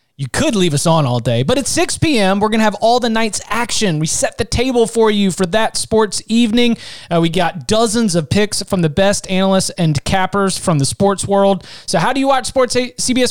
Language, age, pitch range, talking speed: English, 30-49, 165-220 Hz, 235 wpm